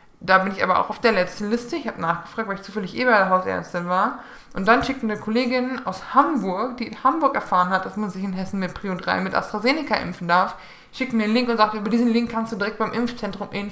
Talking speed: 245 wpm